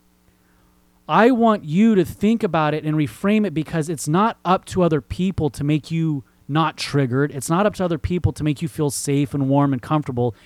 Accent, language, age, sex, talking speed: American, English, 30-49, male, 210 wpm